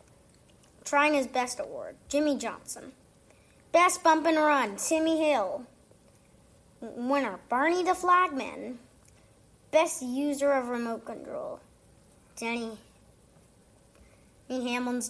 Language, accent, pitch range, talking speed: English, American, 245-295 Hz, 95 wpm